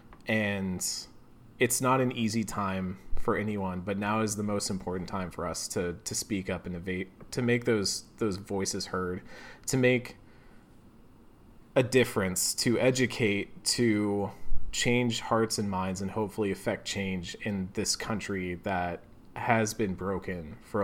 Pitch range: 95-115 Hz